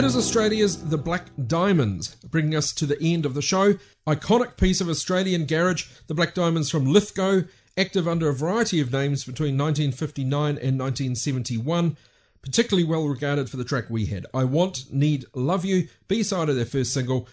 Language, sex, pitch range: English, male, 130-185 Hz